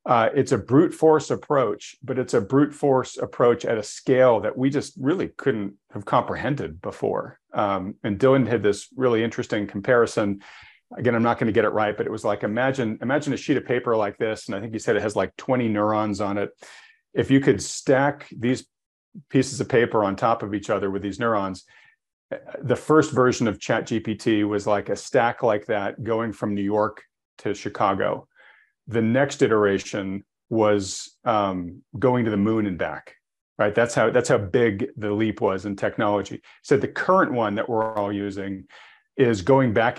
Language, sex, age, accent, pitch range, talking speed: English, male, 40-59, American, 105-130 Hz, 195 wpm